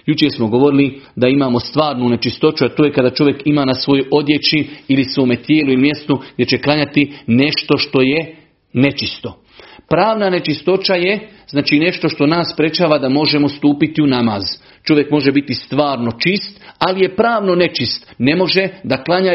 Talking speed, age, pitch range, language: 165 wpm, 40-59, 130-170 Hz, Croatian